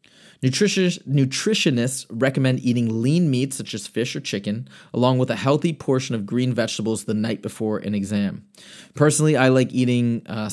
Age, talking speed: 30-49, 160 wpm